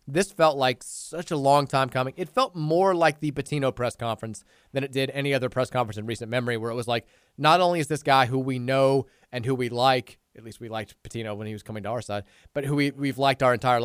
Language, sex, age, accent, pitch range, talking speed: English, male, 30-49, American, 120-150 Hz, 260 wpm